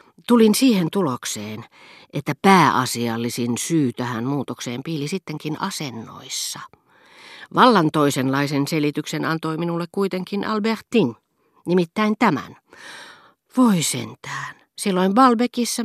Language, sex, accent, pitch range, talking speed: Finnish, female, native, 125-170 Hz, 90 wpm